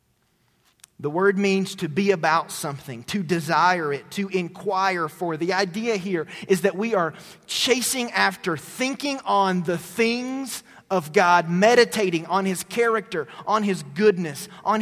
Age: 30-49